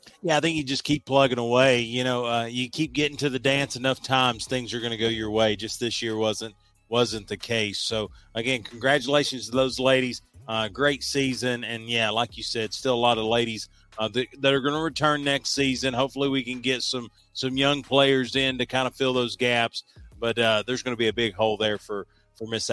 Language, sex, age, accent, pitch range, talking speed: English, male, 30-49, American, 115-135 Hz, 235 wpm